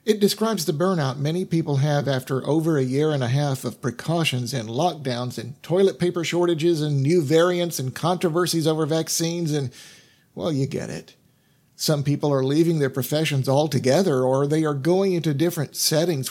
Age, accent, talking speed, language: 50-69, American, 175 wpm, English